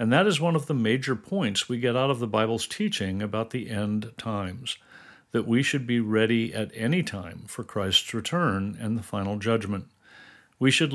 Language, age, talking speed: English, 50-69, 195 wpm